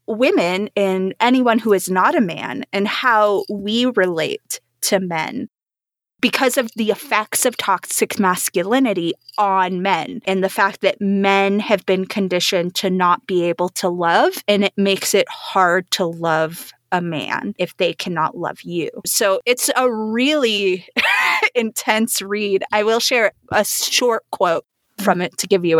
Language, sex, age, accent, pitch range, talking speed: English, female, 20-39, American, 180-225 Hz, 160 wpm